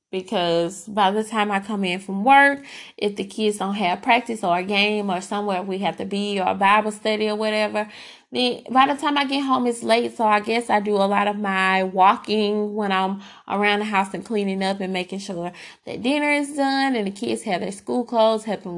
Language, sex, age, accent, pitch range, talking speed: English, female, 20-39, American, 190-235 Hz, 225 wpm